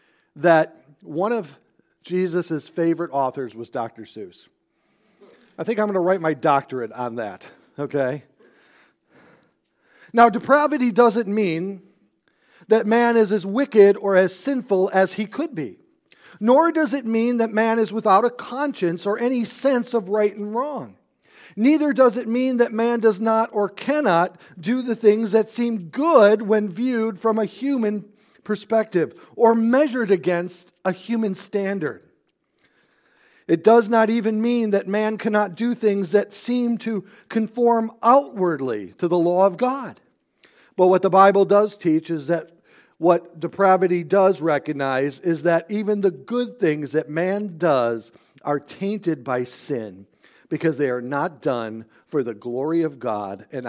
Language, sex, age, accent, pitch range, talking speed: English, male, 40-59, American, 165-230 Hz, 155 wpm